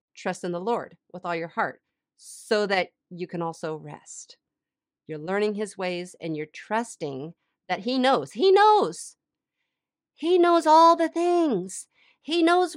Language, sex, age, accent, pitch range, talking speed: English, female, 50-69, American, 185-255 Hz, 155 wpm